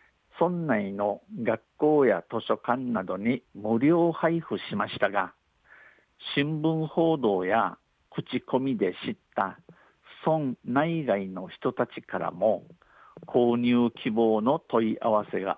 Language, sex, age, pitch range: Japanese, male, 50-69, 110-140 Hz